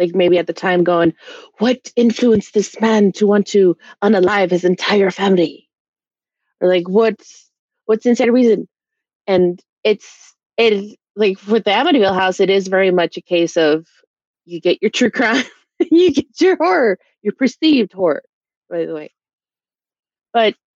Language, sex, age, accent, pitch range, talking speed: English, female, 20-39, American, 180-245 Hz, 155 wpm